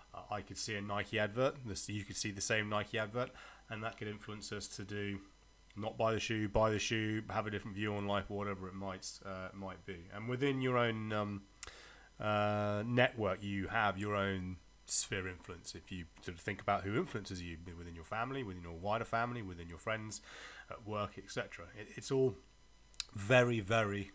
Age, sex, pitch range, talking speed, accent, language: 30-49, male, 100-115 Hz, 200 wpm, British, English